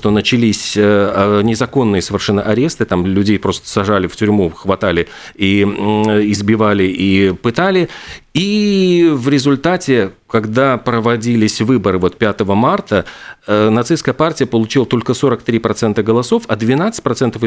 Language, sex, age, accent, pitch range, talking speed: Russian, male, 40-59, native, 105-135 Hz, 115 wpm